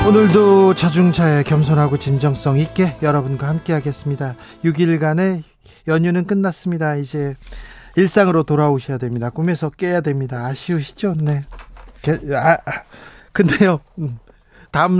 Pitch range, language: 140-185 Hz, Korean